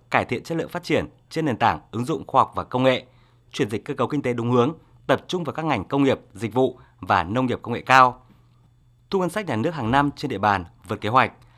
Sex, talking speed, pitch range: male, 270 wpm, 115-145 Hz